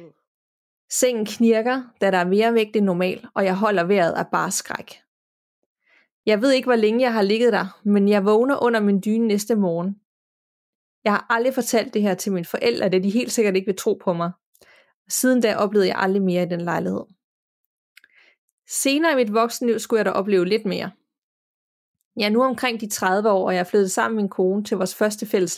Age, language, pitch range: 20-39, Danish, 195-235 Hz